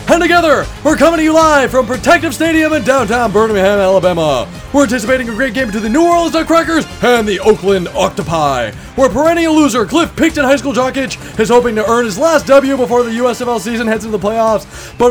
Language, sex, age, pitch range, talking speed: English, male, 20-39, 170-275 Hz, 210 wpm